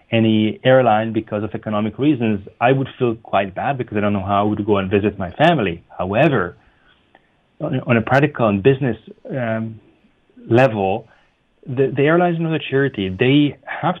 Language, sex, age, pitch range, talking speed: English, male, 30-49, 105-125 Hz, 170 wpm